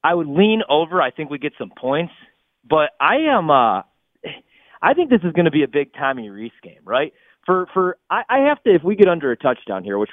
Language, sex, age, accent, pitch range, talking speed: English, male, 30-49, American, 130-175 Hz, 245 wpm